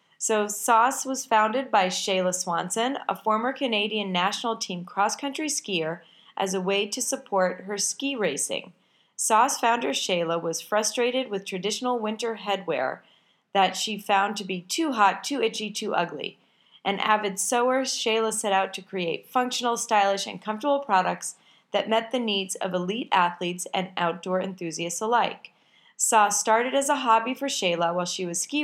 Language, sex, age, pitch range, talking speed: English, female, 30-49, 185-235 Hz, 160 wpm